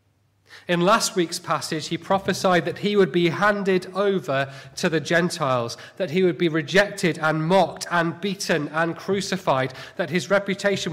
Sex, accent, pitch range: male, British, 130-180 Hz